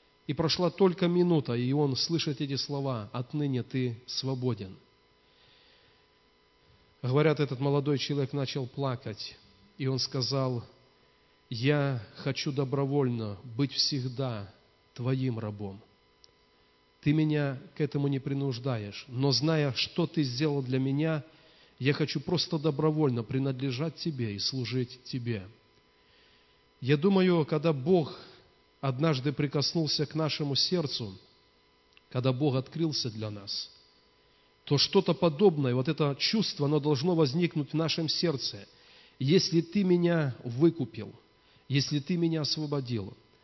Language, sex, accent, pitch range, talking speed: Russian, male, native, 125-155 Hz, 115 wpm